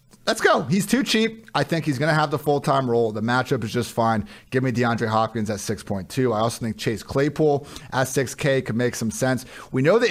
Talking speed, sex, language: 250 wpm, male, English